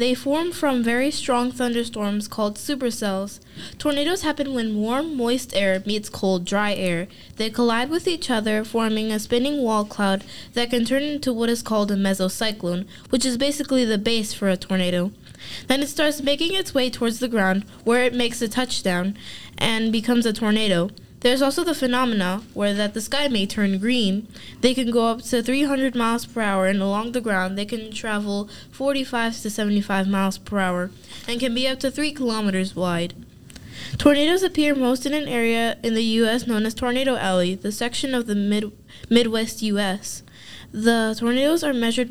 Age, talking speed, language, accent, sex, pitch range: 10-29, 180 wpm, English, American, female, 205-255 Hz